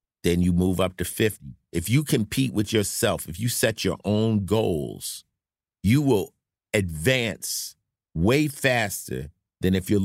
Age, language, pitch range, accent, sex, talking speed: 50-69, English, 90-120 Hz, American, male, 150 wpm